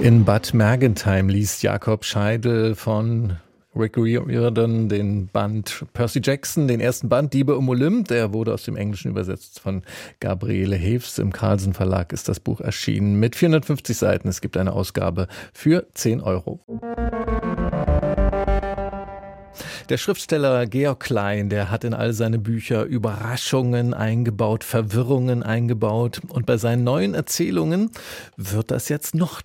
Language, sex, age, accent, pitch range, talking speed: German, male, 40-59, German, 105-140 Hz, 140 wpm